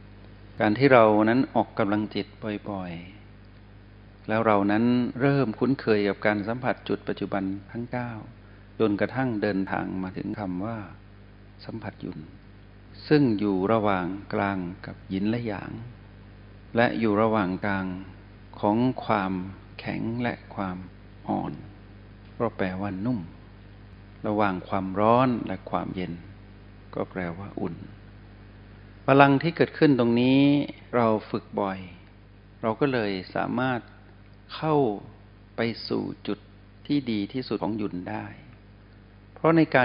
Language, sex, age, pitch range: Thai, male, 60-79, 100-115 Hz